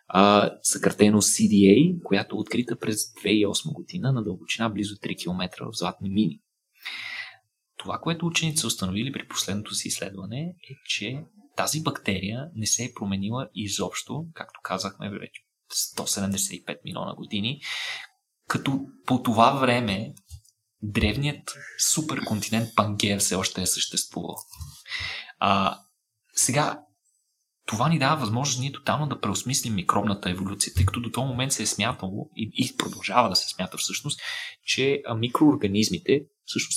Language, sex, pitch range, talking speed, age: Bulgarian, male, 100-130 Hz, 135 wpm, 20-39